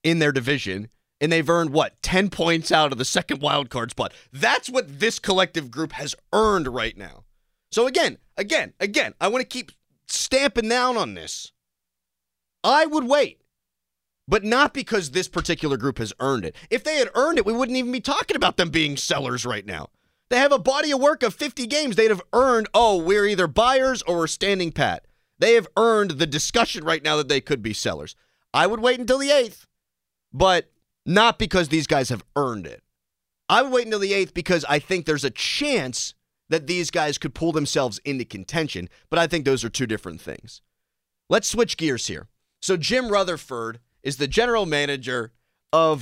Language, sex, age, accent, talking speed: English, male, 30-49, American, 195 wpm